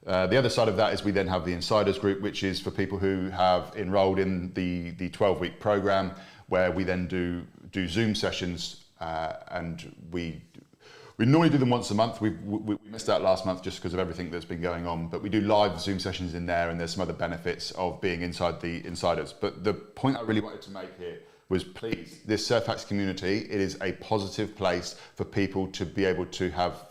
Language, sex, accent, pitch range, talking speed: English, male, British, 90-110 Hz, 225 wpm